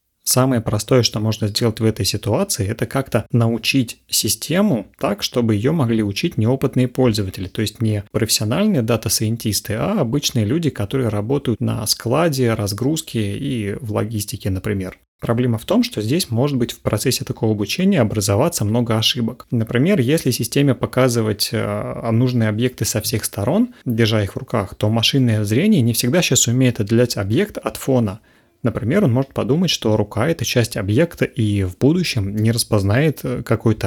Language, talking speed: Russian, 160 wpm